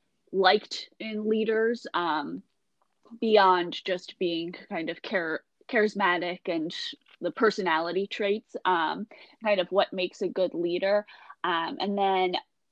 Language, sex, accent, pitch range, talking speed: English, female, American, 180-210 Hz, 125 wpm